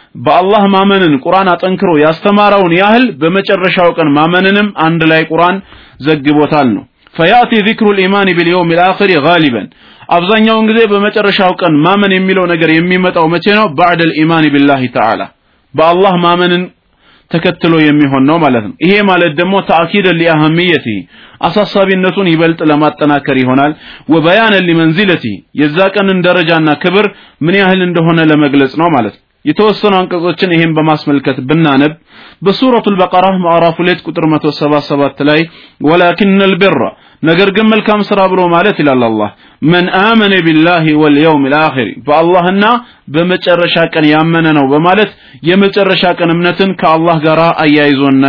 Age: 30-49